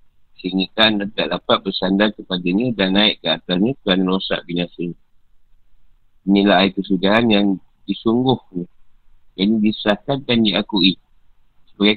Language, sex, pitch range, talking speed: Malay, male, 95-110 Hz, 125 wpm